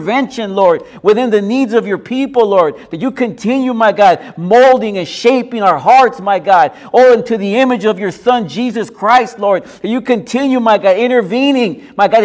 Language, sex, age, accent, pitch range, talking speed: English, male, 50-69, American, 220-270 Hz, 195 wpm